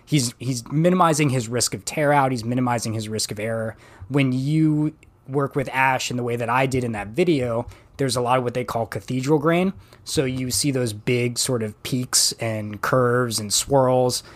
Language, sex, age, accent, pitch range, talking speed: English, male, 20-39, American, 110-135 Hz, 200 wpm